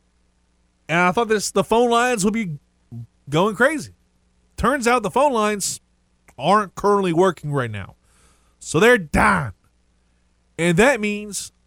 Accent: American